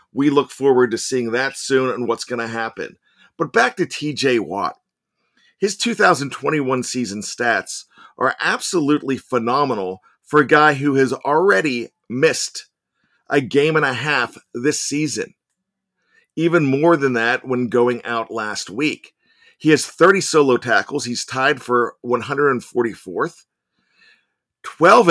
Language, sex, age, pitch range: English, male, 40-59, 120-150 Hz